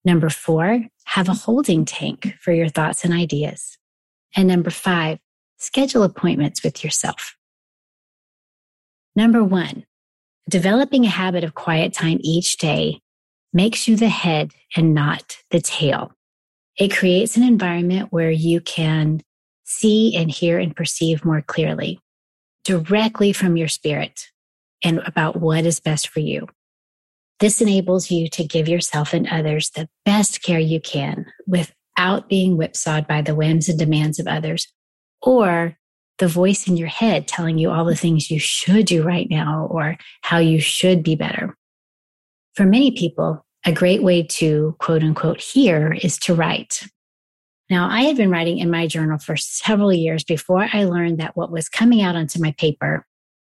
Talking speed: 160 wpm